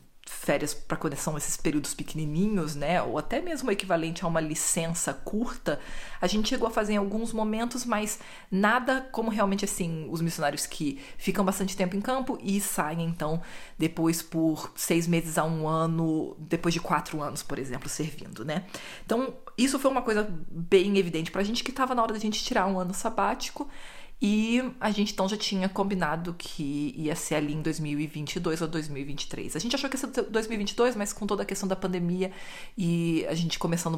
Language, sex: Portuguese, female